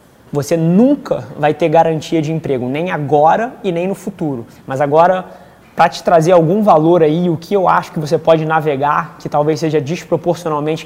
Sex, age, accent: male, 20-39, Brazilian